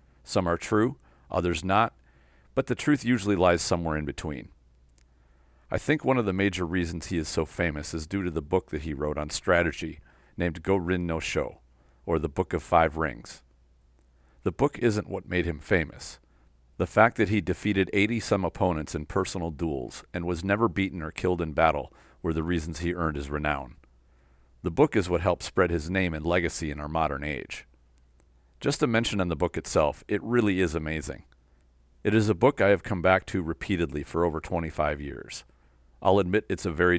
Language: English